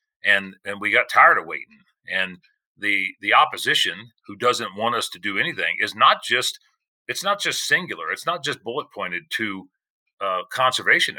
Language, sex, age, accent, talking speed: English, male, 40-59, American, 175 wpm